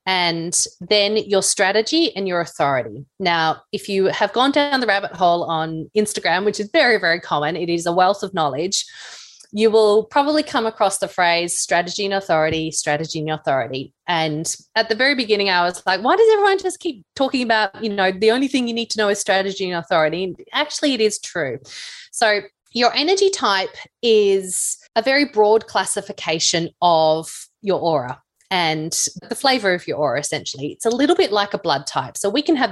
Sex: female